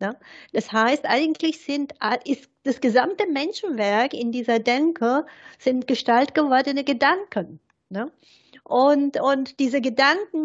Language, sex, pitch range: German, female, 220-280 Hz